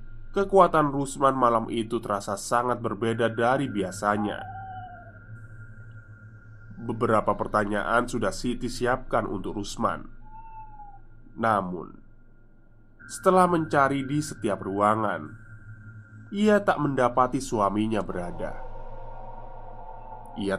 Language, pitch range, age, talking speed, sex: Indonesian, 110-130 Hz, 20-39, 80 wpm, male